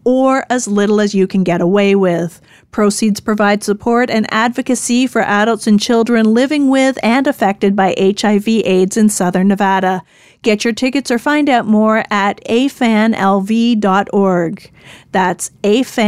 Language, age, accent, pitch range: English, 40-59, American, 195-235 Hz